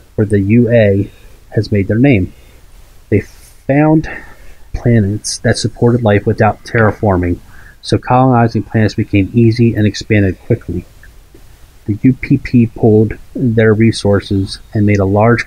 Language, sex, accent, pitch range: English, male, American, 100-115 Hz